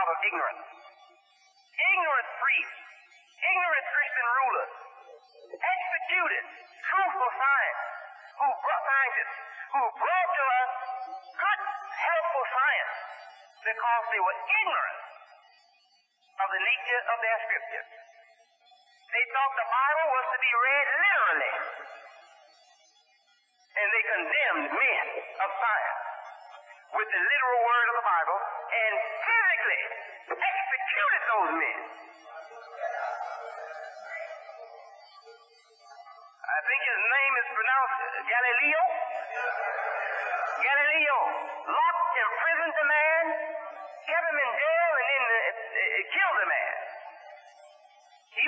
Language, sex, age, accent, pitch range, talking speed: English, male, 50-69, American, 270-370 Hz, 95 wpm